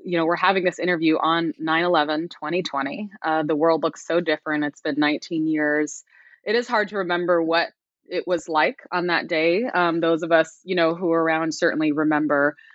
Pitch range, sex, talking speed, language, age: 160-185 Hz, female, 195 wpm, English, 20-39